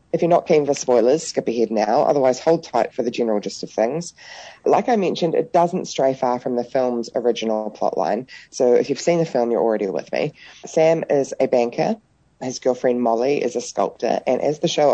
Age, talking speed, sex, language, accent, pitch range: 20-39, 215 wpm, female, English, Australian, 115-150 Hz